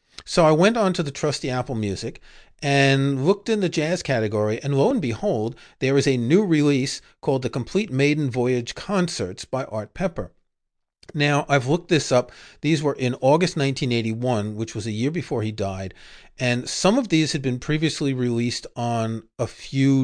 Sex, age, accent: male, 40-59, American